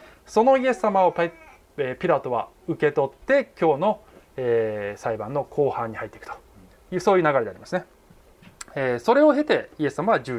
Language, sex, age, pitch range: Japanese, male, 20-39, 145-230 Hz